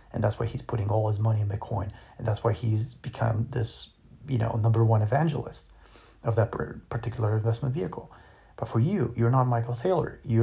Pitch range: 110-125 Hz